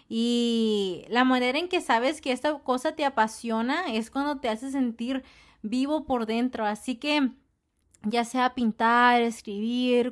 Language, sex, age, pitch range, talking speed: English, female, 20-39, 220-265 Hz, 150 wpm